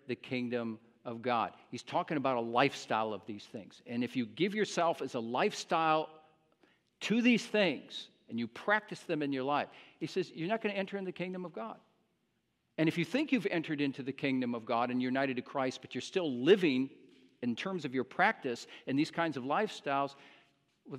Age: 50-69